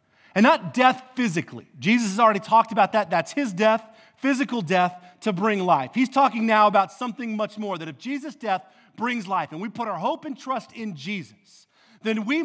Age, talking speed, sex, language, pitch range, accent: 40-59, 200 wpm, male, English, 190-255 Hz, American